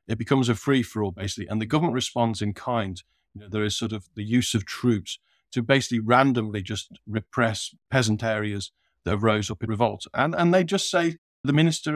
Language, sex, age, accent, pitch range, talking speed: English, male, 50-69, British, 105-130 Hz, 200 wpm